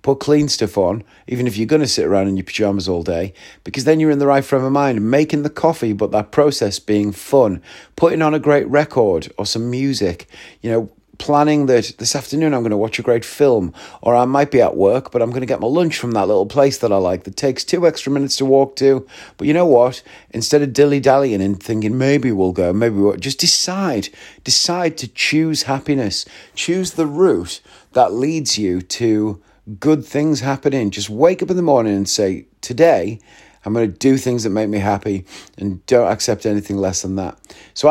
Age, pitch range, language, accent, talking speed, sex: 40-59, 105-145 Hz, English, British, 220 wpm, male